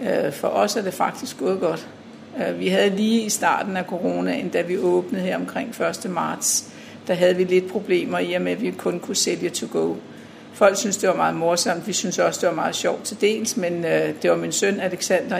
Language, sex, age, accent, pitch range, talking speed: Danish, female, 60-79, native, 180-215 Hz, 220 wpm